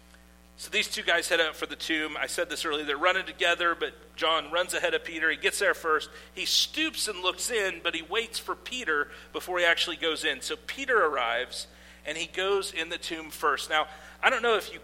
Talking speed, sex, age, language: 230 wpm, male, 40-59, English